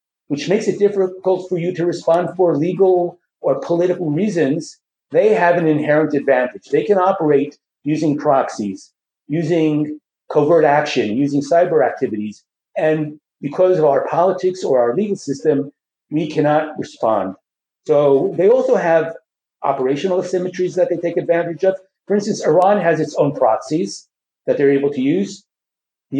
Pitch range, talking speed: 140-185 Hz, 150 wpm